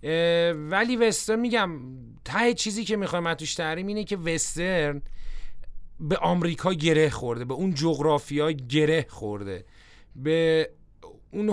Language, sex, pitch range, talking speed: Persian, male, 145-185 Hz, 125 wpm